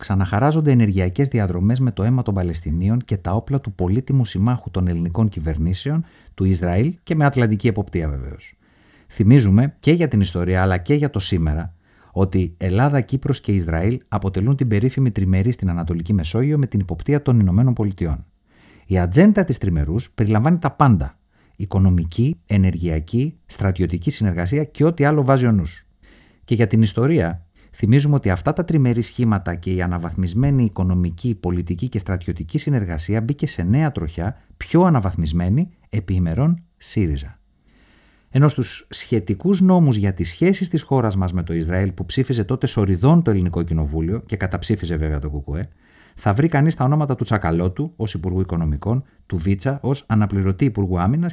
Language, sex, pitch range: Greek, male, 90-135 Hz